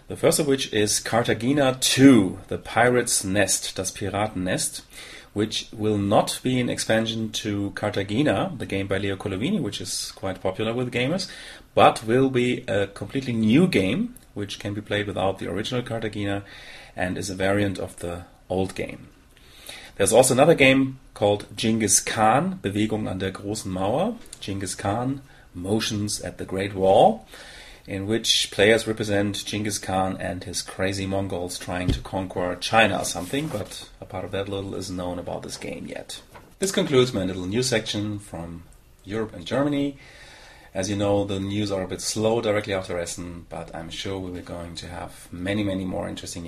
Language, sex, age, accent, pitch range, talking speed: English, male, 30-49, German, 95-115 Hz, 175 wpm